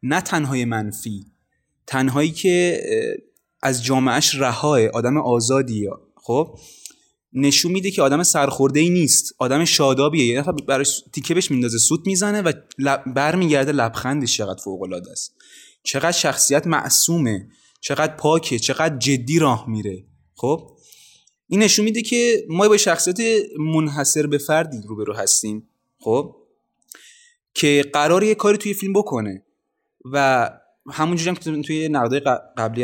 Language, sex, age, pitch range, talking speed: Persian, male, 20-39, 125-165 Hz, 125 wpm